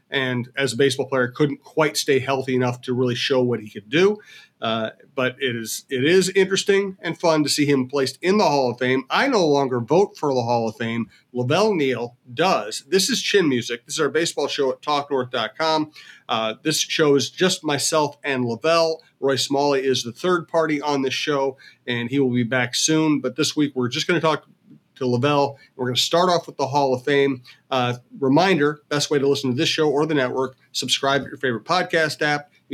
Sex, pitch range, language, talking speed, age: male, 130-160 Hz, English, 220 wpm, 40-59